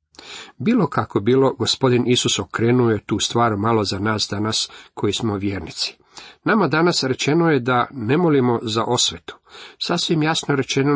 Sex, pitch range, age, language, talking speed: male, 105-130 Hz, 50-69, Croatian, 150 wpm